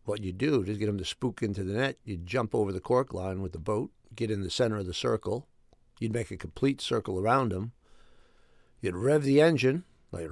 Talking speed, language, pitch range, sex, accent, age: 225 wpm, English, 95-125 Hz, male, American, 50-69